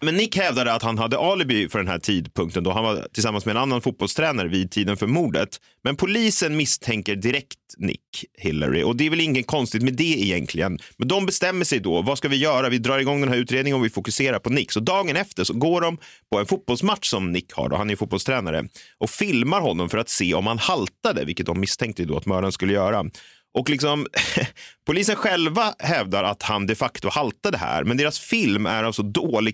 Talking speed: 220 wpm